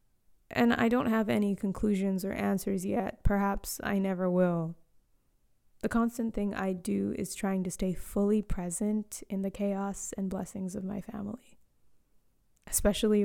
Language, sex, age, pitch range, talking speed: English, female, 20-39, 195-215 Hz, 150 wpm